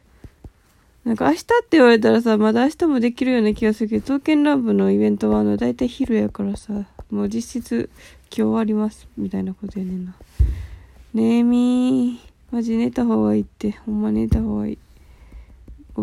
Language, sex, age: Japanese, female, 20-39